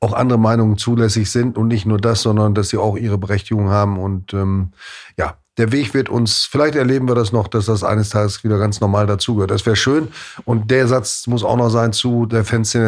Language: German